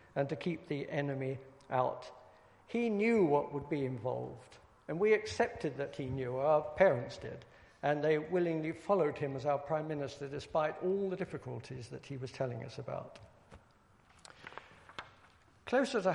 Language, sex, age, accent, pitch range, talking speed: English, male, 60-79, British, 145-180 Hz, 155 wpm